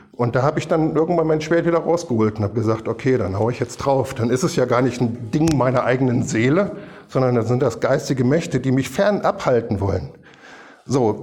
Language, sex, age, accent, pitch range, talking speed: German, male, 50-69, German, 125-160 Hz, 225 wpm